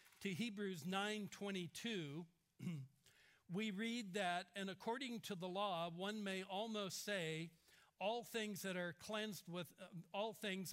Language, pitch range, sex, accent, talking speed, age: English, 170-205 Hz, male, American, 145 wpm, 60-79